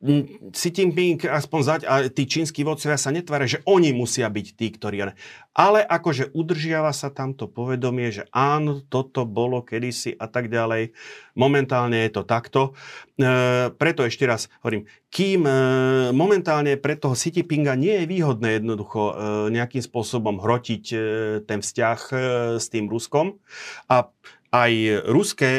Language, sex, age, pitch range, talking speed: Slovak, male, 40-59, 105-135 Hz, 150 wpm